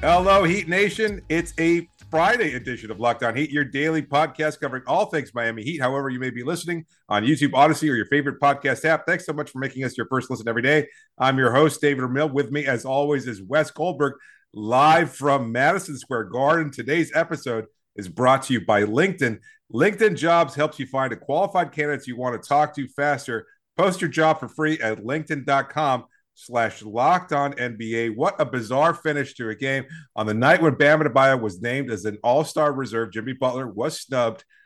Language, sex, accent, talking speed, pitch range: English, male, American, 200 wpm, 125-155 Hz